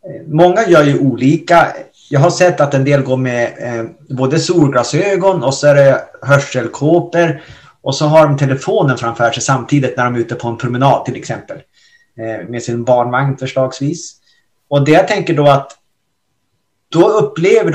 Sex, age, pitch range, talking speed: male, 30-49, 130-160 Hz, 165 wpm